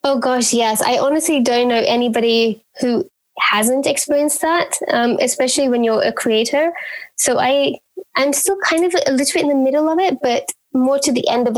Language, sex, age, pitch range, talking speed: English, female, 20-39, 235-280 Hz, 200 wpm